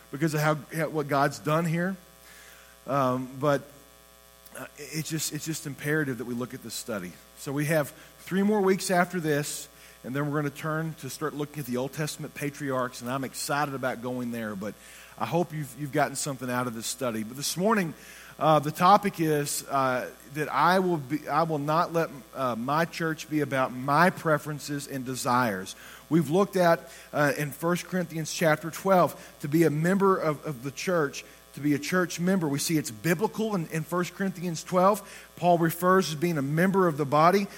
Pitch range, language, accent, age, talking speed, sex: 140-170 Hz, English, American, 40-59, 200 wpm, male